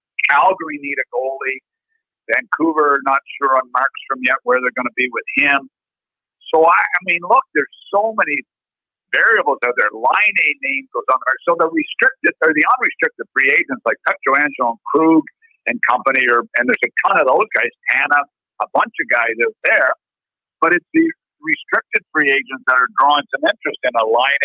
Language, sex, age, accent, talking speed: English, male, 50-69, American, 190 wpm